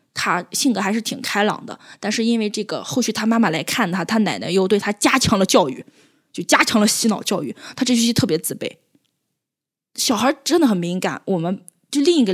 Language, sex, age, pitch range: Chinese, female, 20-39, 210-295 Hz